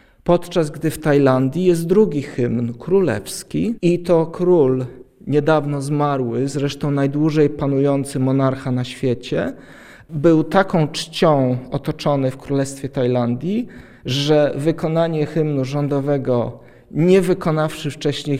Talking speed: 110 wpm